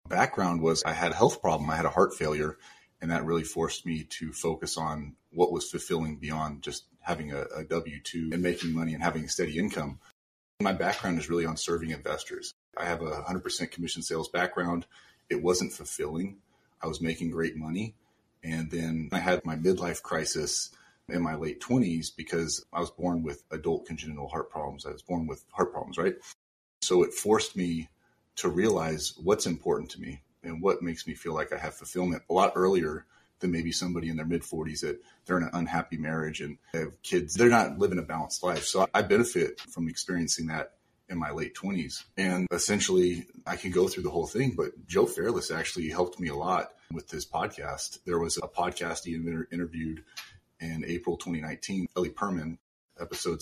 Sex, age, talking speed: male, 30-49, 195 wpm